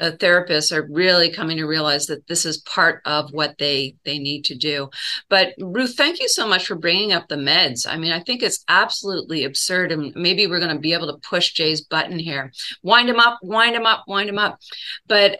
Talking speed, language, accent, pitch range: 220 wpm, English, American, 175-230 Hz